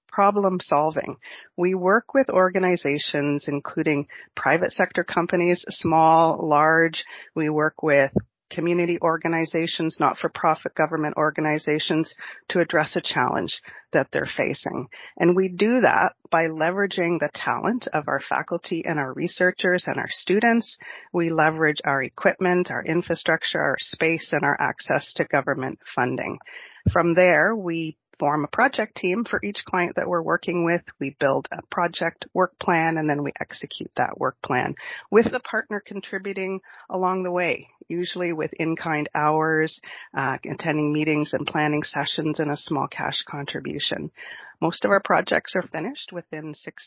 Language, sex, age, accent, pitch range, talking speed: English, female, 40-59, American, 155-190 Hz, 145 wpm